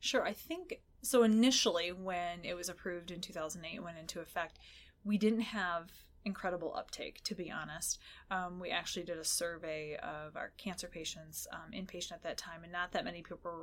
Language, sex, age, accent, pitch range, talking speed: English, female, 20-39, American, 175-225 Hz, 195 wpm